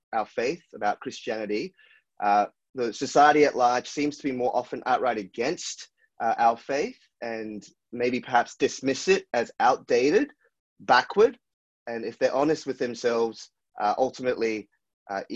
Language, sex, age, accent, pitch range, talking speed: English, male, 30-49, Australian, 120-165 Hz, 140 wpm